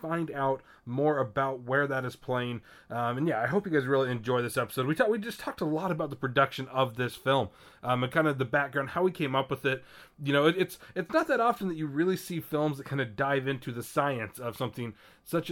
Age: 30-49